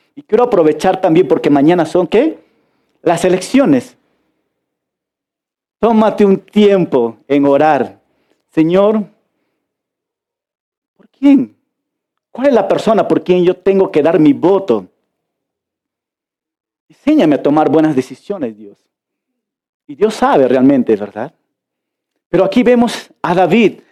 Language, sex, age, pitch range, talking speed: Spanish, male, 40-59, 180-290 Hz, 115 wpm